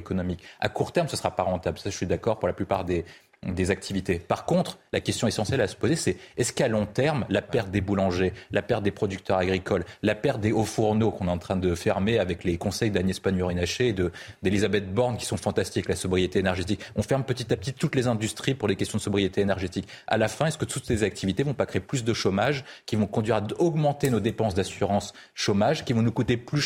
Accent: French